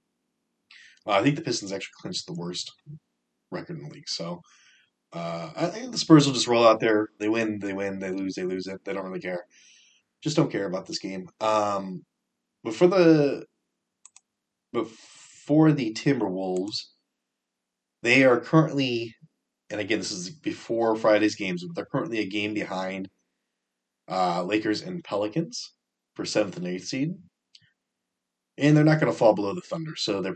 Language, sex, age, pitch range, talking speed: English, male, 30-49, 95-160 Hz, 170 wpm